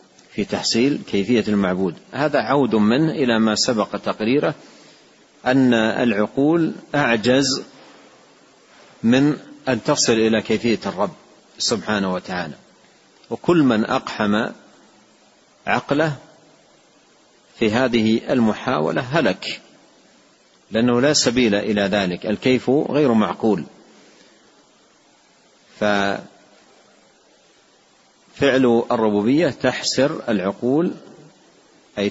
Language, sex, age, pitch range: Arabic, male, 50-69, 105-130 Hz